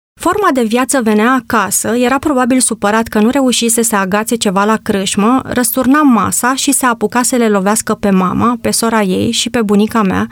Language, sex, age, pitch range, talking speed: Romanian, female, 30-49, 210-250 Hz, 190 wpm